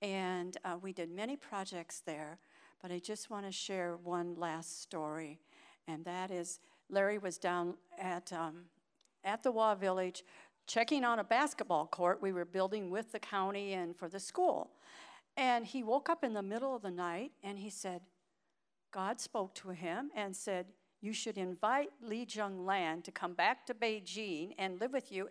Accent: American